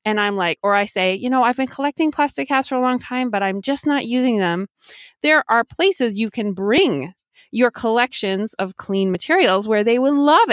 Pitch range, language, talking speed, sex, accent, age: 195-260 Hz, English, 215 wpm, female, American, 30-49